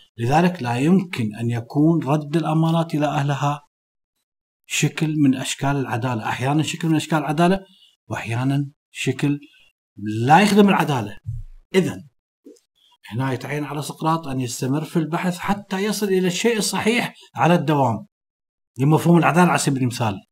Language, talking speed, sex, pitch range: Arabic, 130 wpm, male, 130-170 Hz